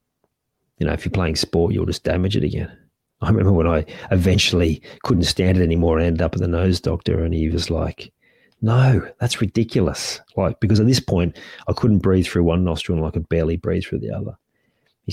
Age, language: 40-59, English